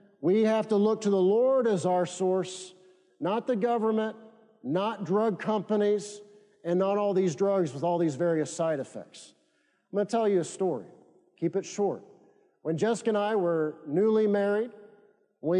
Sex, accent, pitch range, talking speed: male, American, 180-210 Hz, 175 wpm